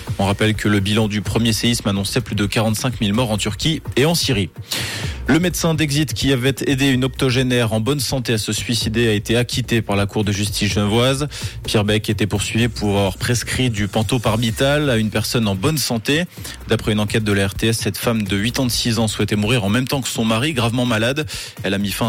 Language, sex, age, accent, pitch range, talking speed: French, male, 20-39, French, 105-130 Hz, 225 wpm